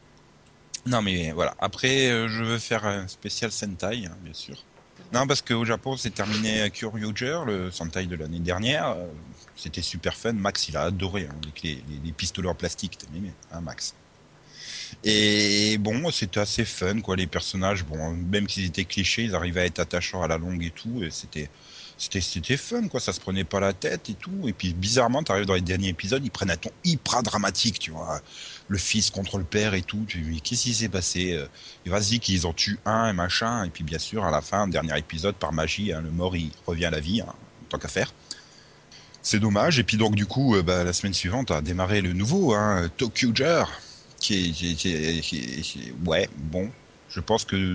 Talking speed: 210 wpm